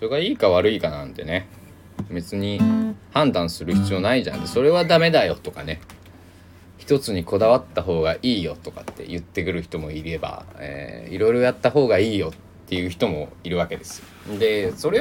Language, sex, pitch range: Japanese, male, 90-100 Hz